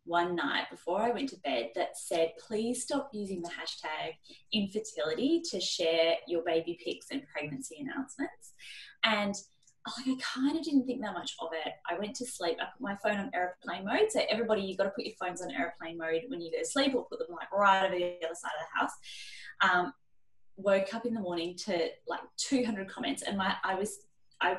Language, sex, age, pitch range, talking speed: English, female, 10-29, 180-250 Hz, 215 wpm